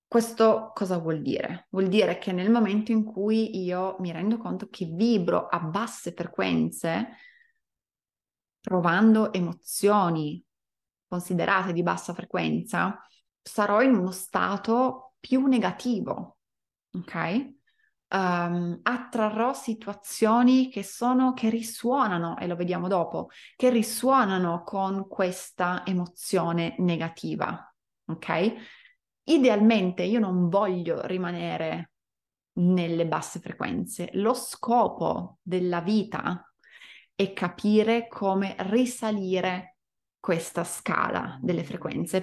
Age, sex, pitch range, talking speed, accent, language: 20-39, female, 180-230 Hz, 100 wpm, native, Italian